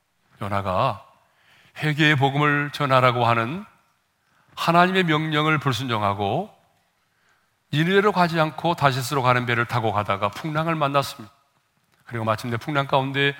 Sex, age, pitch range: male, 40-59, 125-170 Hz